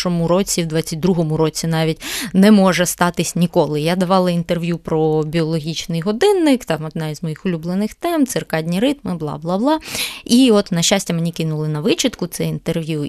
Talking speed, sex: 155 wpm, female